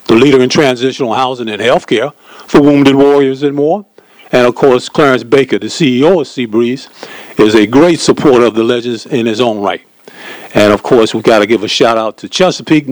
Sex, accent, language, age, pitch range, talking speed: male, American, English, 50-69, 120-165 Hz, 210 wpm